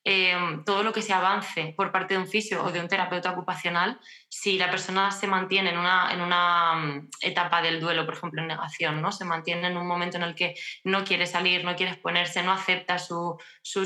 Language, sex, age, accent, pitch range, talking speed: Spanish, female, 20-39, Spanish, 175-195 Hz, 220 wpm